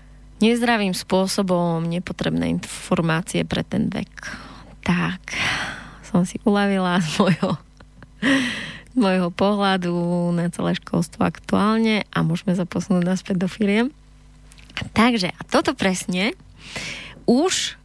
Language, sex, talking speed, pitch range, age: Slovak, female, 100 wpm, 180-215 Hz, 20-39